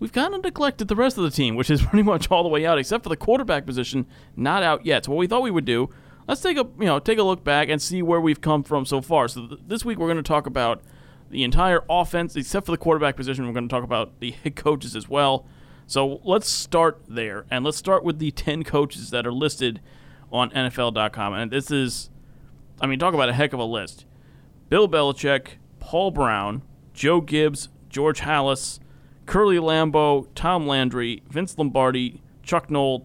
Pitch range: 130-165 Hz